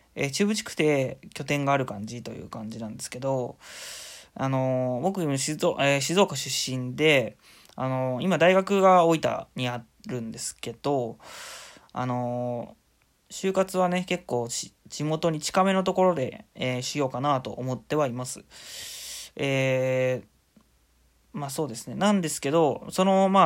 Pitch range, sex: 125-170 Hz, male